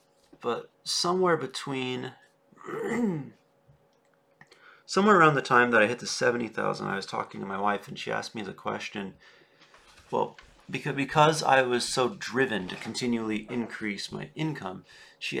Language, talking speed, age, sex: English, 140 wpm, 40-59, male